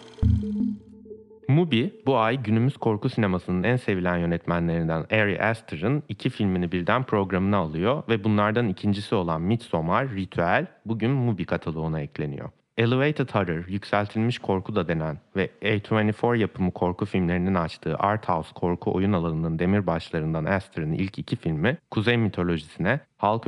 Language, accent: Turkish, native